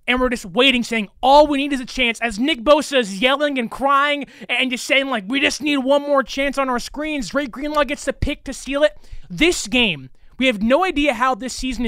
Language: English